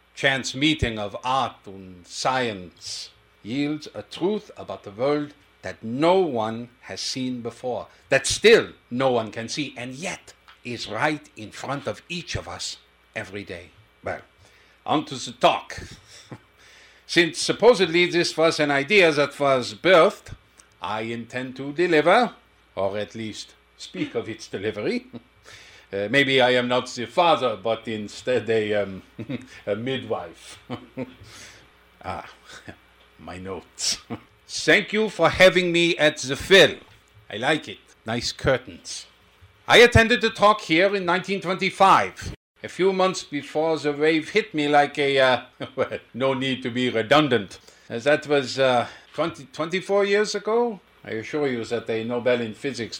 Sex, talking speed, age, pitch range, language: male, 145 wpm, 50-69, 115-155 Hz, English